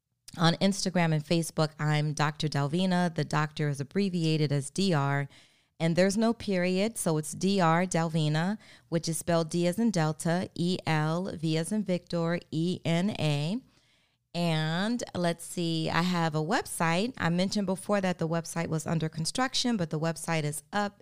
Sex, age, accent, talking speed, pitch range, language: female, 30-49, American, 155 wpm, 160-190 Hz, English